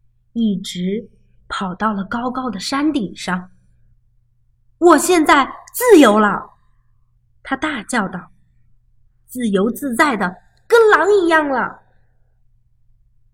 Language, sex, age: Chinese, female, 20-39